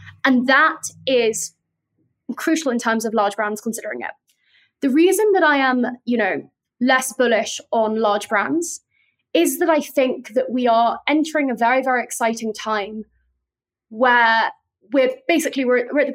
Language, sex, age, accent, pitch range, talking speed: English, female, 20-39, British, 220-265 Hz, 160 wpm